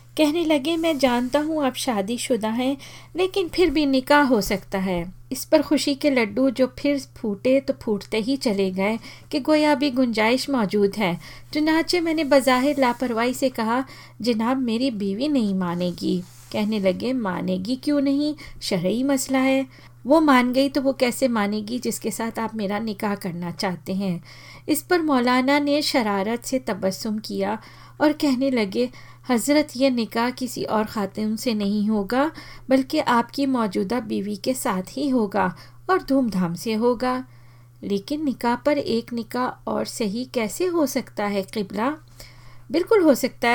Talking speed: 160 wpm